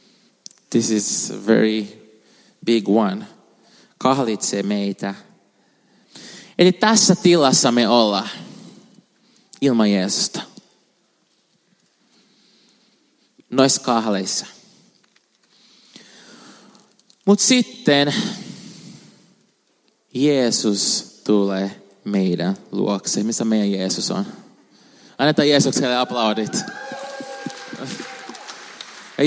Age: 20-39